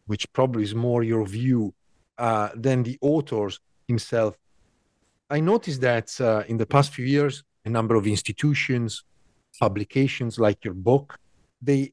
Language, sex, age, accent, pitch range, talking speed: English, male, 40-59, Italian, 115-145 Hz, 145 wpm